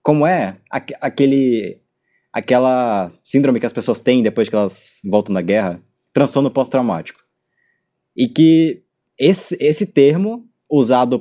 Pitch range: 115-155 Hz